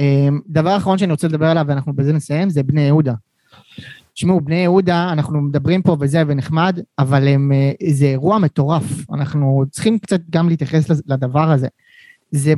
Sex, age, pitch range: male, 20-39, 150-210 Hz